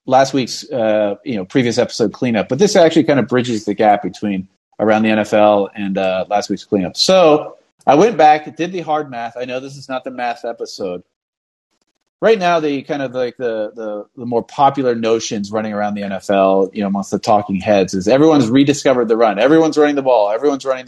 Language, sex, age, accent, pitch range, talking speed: English, male, 30-49, American, 105-145 Hz, 215 wpm